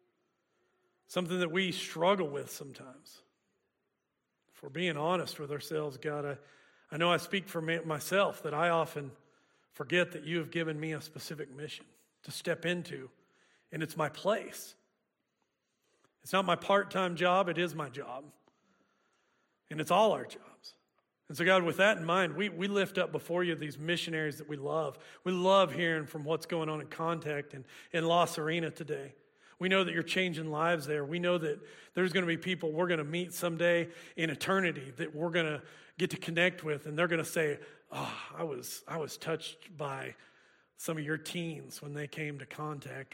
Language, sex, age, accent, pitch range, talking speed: English, male, 40-59, American, 155-180 Hz, 185 wpm